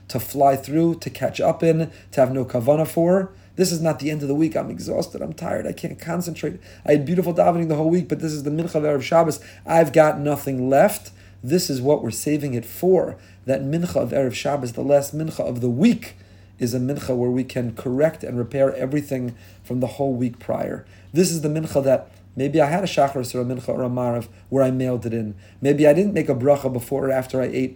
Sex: male